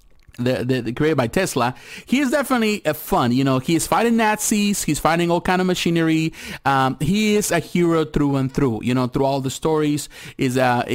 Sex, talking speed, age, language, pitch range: male, 215 wpm, 30-49, English, 135-180 Hz